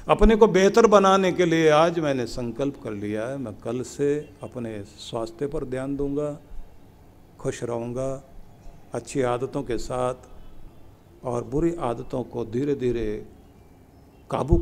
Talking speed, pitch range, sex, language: 135 wpm, 115-170 Hz, male, Hindi